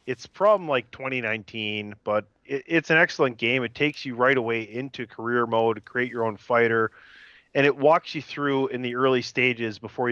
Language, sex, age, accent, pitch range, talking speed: English, male, 30-49, American, 110-130 Hz, 190 wpm